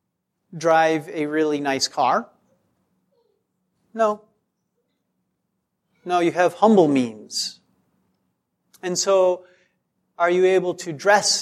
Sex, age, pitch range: male, 40-59, 165-225 Hz